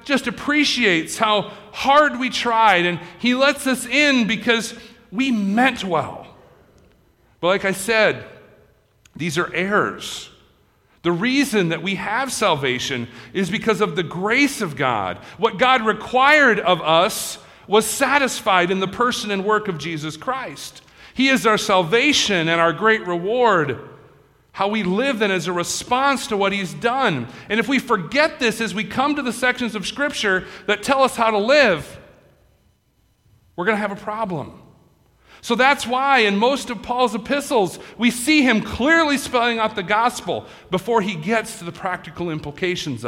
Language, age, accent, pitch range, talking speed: English, 40-59, American, 170-240 Hz, 165 wpm